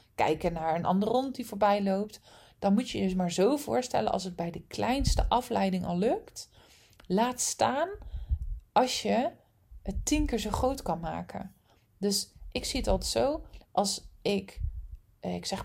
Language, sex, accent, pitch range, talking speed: Dutch, female, Dutch, 165-230 Hz, 170 wpm